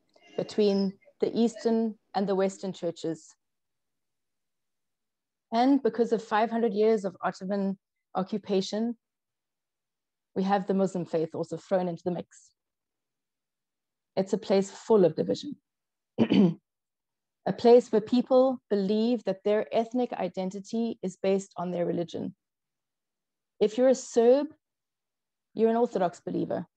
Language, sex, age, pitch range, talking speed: English, female, 30-49, 185-230 Hz, 120 wpm